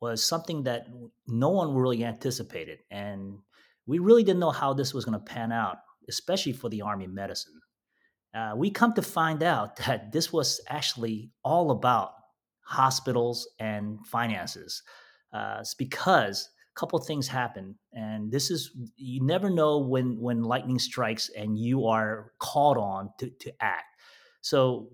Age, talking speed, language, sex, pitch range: 30-49, 160 wpm, English, male, 110-140 Hz